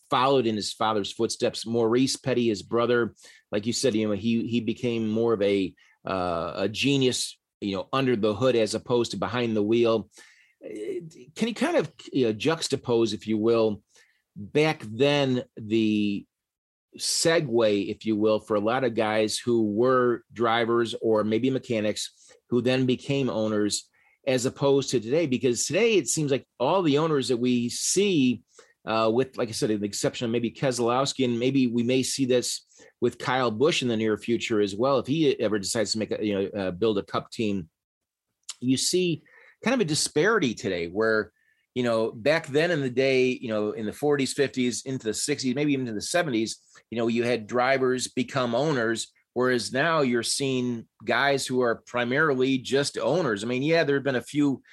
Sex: male